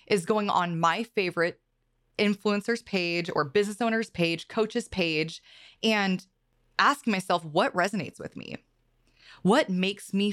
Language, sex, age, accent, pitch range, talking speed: English, female, 20-39, American, 170-220 Hz, 135 wpm